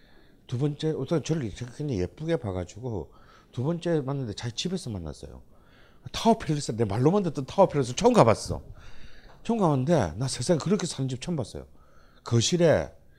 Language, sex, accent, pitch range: Korean, male, native, 110-185 Hz